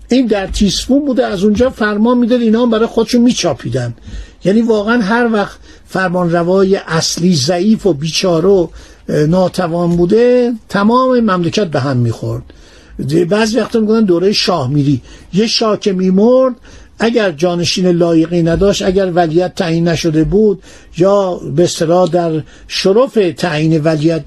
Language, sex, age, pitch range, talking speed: Persian, male, 50-69, 170-225 Hz, 135 wpm